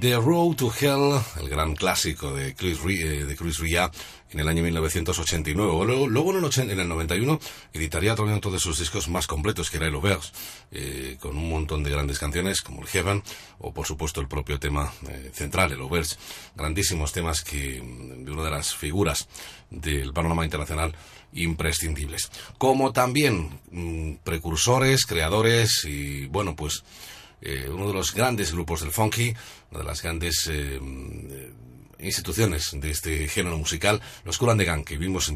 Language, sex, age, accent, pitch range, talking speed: Spanish, male, 40-59, Spanish, 75-100 Hz, 165 wpm